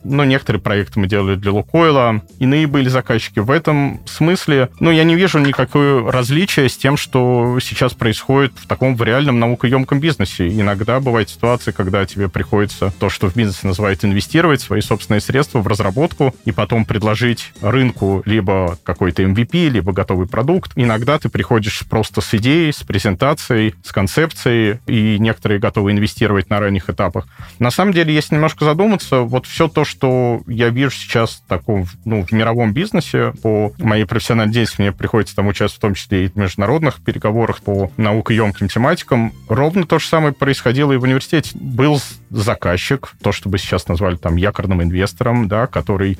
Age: 30-49